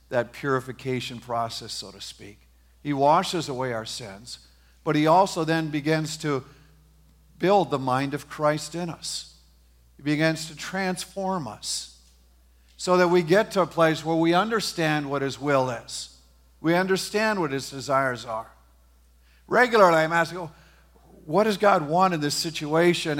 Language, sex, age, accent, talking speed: English, male, 50-69, American, 155 wpm